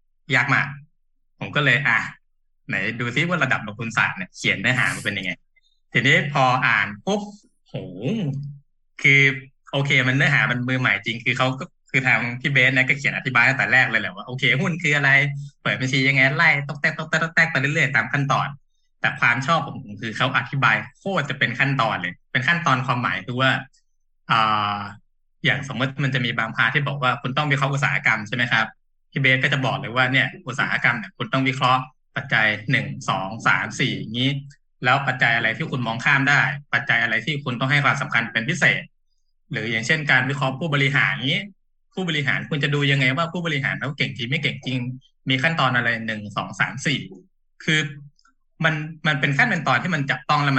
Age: 20-39